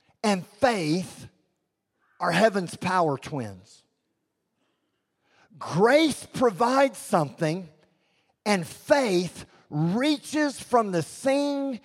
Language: English